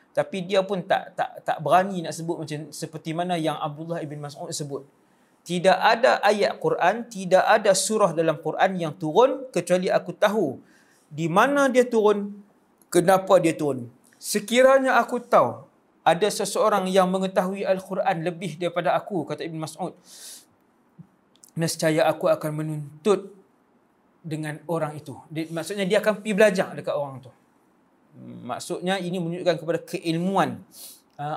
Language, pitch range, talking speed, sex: English, 155-205 Hz, 140 wpm, male